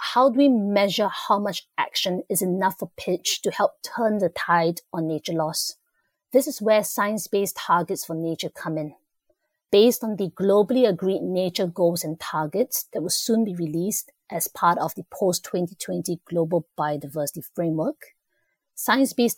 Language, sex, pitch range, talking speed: English, female, 170-220 Hz, 160 wpm